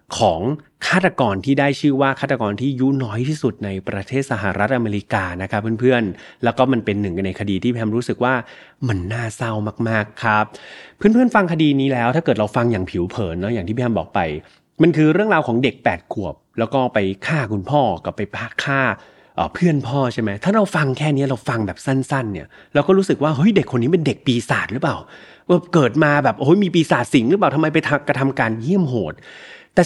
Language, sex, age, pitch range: Thai, male, 30-49, 110-155 Hz